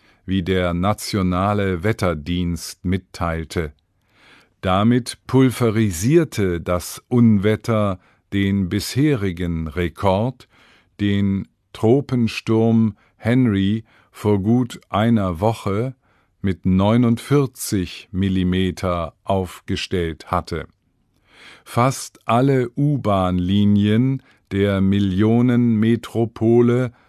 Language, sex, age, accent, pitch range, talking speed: English, male, 50-69, German, 95-120 Hz, 65 wpm